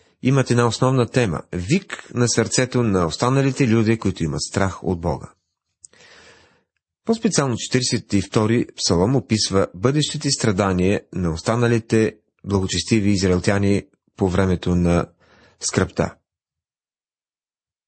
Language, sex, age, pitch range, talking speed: Bulgarian, male, 30-49, 100-135 Hz, 105 wpm